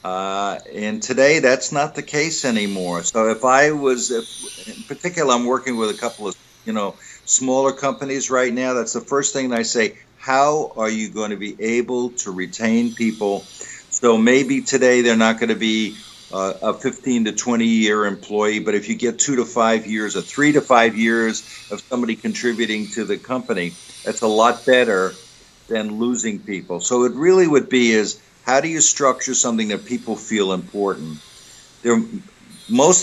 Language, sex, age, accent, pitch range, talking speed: English, male, 50-69, American, 105-130 Hz, 185 wpm